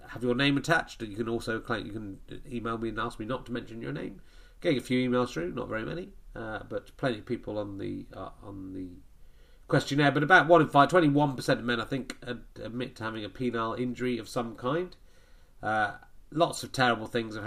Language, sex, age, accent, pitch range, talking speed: English, male, 30-49, British, 110-135 Hz, 225 wpm